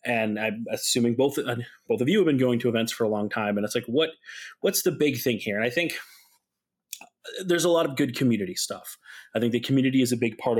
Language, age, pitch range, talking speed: English, 30-49, 115-145 Hz, 245 wpm